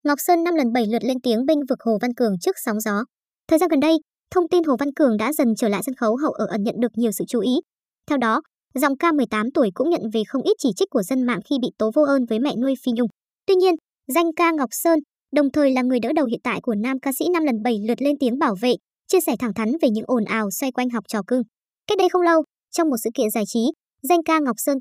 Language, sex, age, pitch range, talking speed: Vietnamese, male, 20-39, 230-310 Hz, 290 wpm